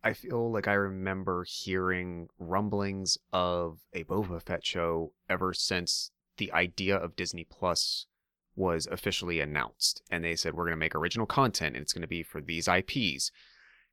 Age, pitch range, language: 30-49, 85-100 Hz, English